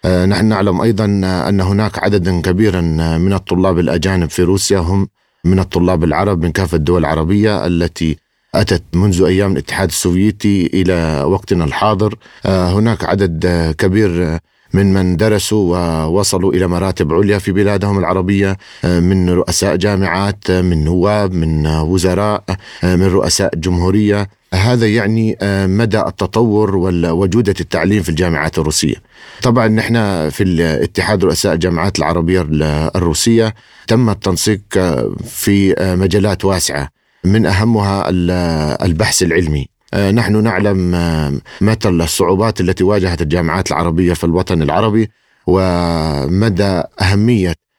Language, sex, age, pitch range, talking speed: Arabic, male, 50-69, 85-100 Hz, 115 wpm